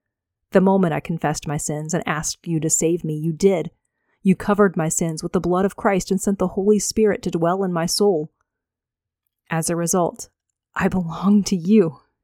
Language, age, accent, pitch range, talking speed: English, 30-49, American, 160-195 Hz, 195 wpm